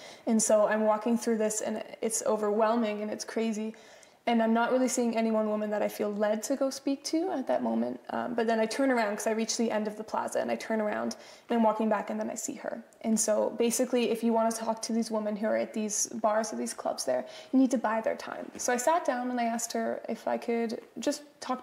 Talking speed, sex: 270 wpm, female